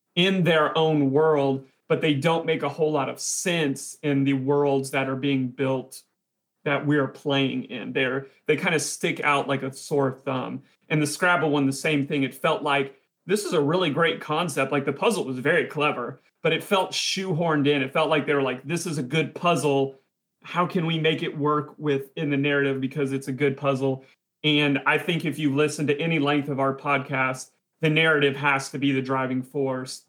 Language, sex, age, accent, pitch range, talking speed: English, male, 30-49, American, 135-165 Hz, 215 wpm